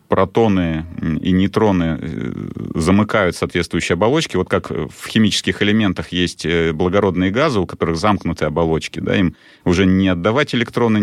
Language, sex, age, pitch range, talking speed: Russian, male, 30-49, 85-105 Hz, 125 wpm